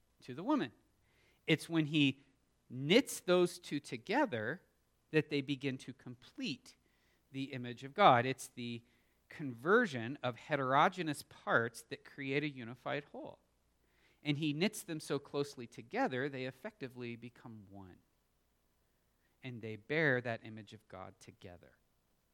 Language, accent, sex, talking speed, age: English, American, male, 130 wpm, 40-59